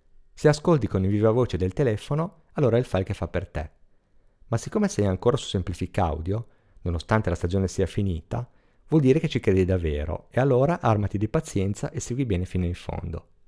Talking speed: 200 wpm